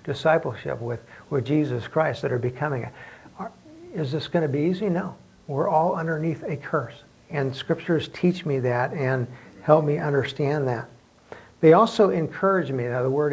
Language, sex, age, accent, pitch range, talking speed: English, male, 60-79, American, 125-150 Hz, 170 wpm